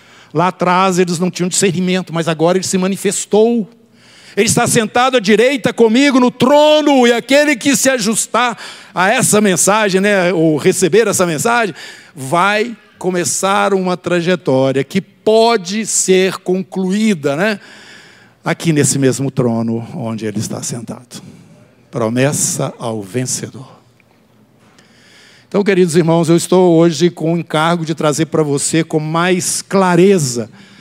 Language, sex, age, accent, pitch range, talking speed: Portuguese, male, 60-79, Brazilian, 165-225 Hz, 130 wpm